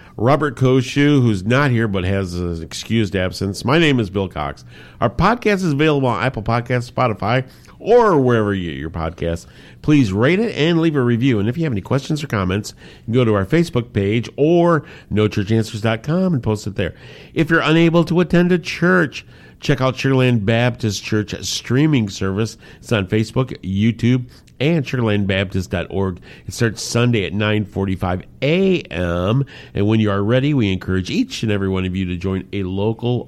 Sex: male